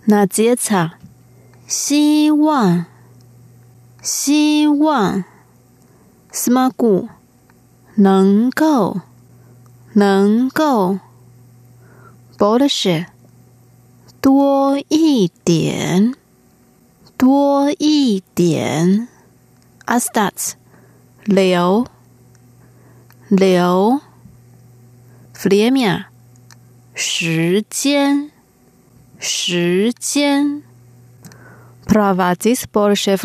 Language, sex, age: Russian, female, 30-49